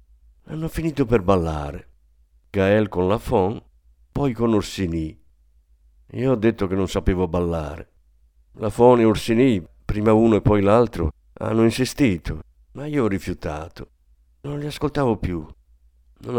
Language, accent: Italian, native